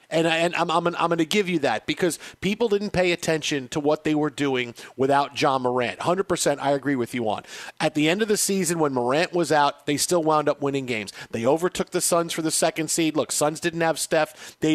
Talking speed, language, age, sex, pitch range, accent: 250 wpm, English, 40-59, male, 155-195 Hz, American